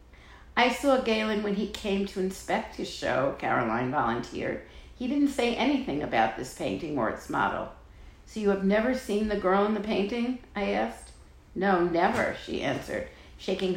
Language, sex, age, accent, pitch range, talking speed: English, female, 50-69, American, 145-215 Hz, 170 wpm